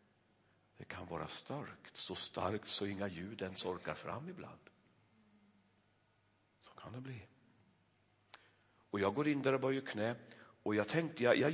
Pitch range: 105-125 Hz